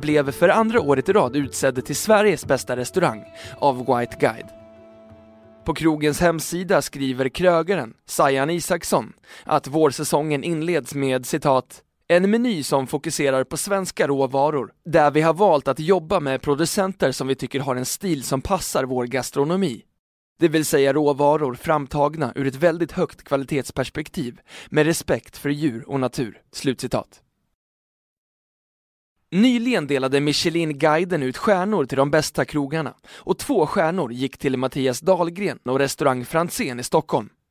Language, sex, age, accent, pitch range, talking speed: Swedish, male, 20-39, native, 130-170 Hz, 145 wpm